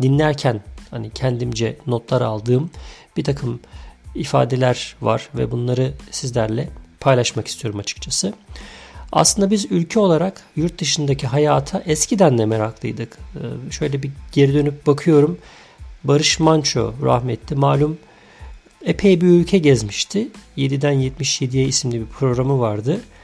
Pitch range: 125-160 Hz